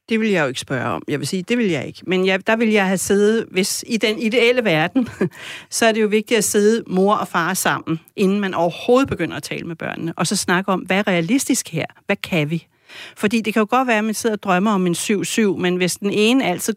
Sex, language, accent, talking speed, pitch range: female, Danish, native, 270 wpm, 170-220 Hz